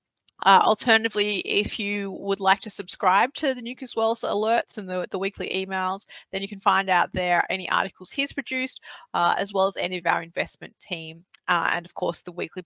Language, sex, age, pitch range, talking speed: English, female, 30-49, 185-250 Hz, 205 wpm